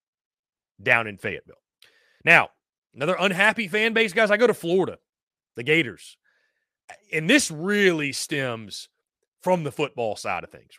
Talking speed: 140 wpm